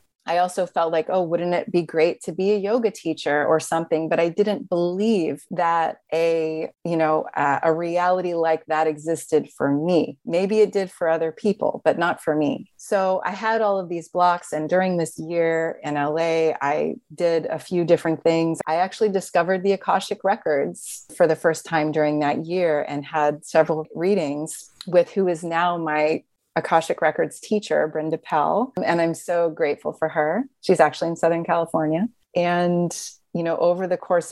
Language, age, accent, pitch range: English, 30-49, American, 155-180 Hz